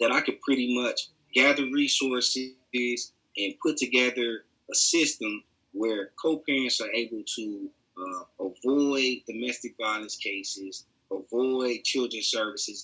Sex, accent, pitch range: male, American, 115-145 Hz